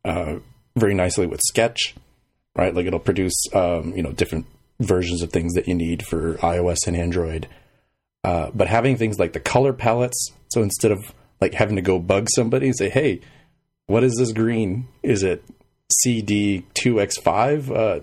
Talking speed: 175 wpm